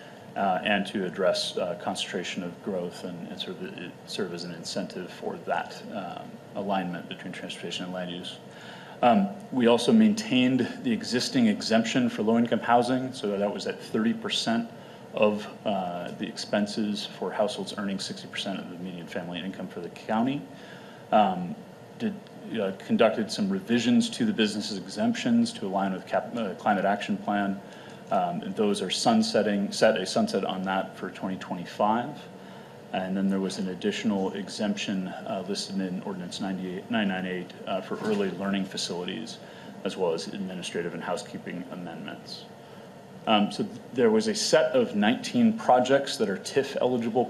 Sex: male